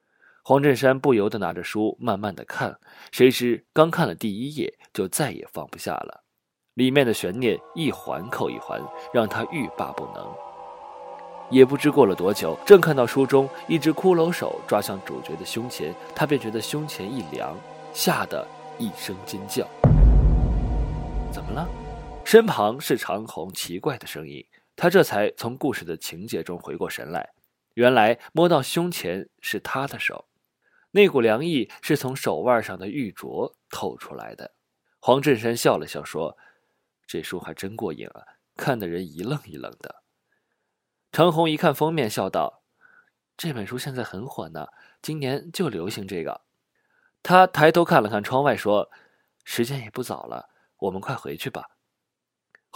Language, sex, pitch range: Chinese, male, 120-165 Hz